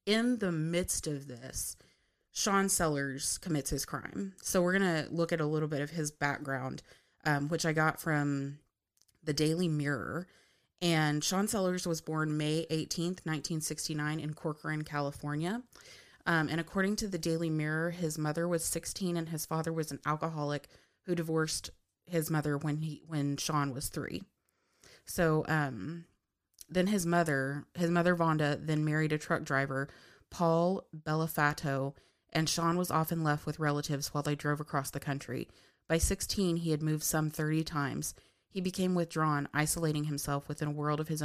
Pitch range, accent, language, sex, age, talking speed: 145-165 Hz, American, English, female, 20-39, 165 wpm